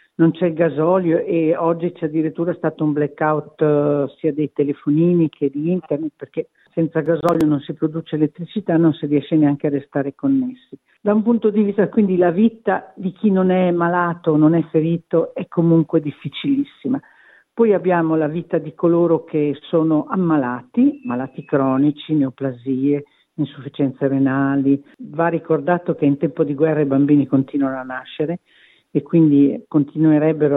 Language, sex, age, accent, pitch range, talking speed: Italian, female, 50-69, native, 145-185 Hz, 155 wpm